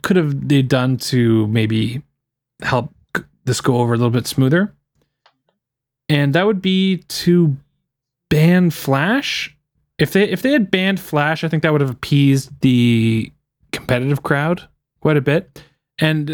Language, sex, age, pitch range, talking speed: English, male, 20-39, 120-150 Hz, 150 wpm